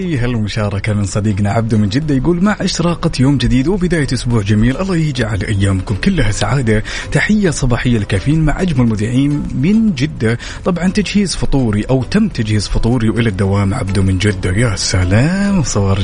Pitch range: 100-135 Hz